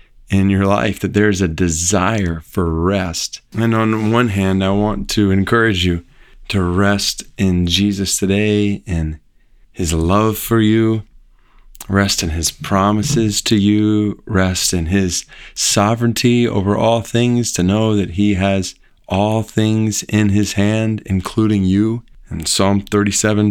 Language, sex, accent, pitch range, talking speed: English, male, American, 95-110 Hz, 145 wpm